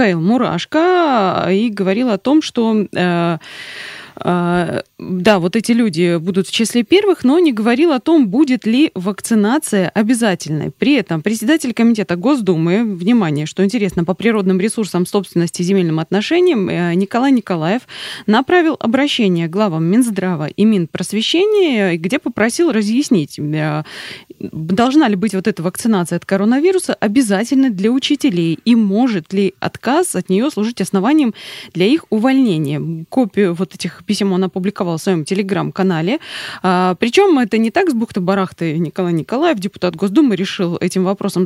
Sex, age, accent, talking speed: female, 20-39, native, 135 wpm